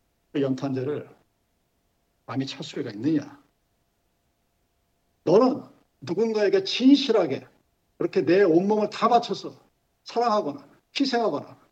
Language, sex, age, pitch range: Korean, male, 50-69, 135-210 Hz